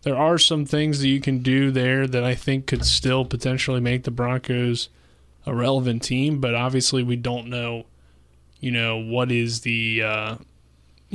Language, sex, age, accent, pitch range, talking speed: English, male, 20-39, American, 115-135 Hz, 170 wpm